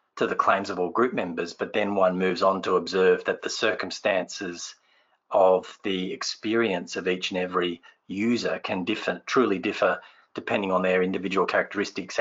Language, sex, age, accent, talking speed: English, male, 40-59, Australian, 165 wpm